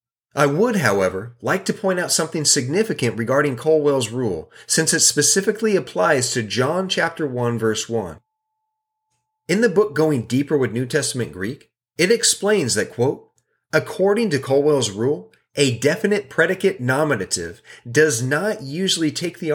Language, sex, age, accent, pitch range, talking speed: English, male, 40-59, American, 125-185 Hz, 145 wpm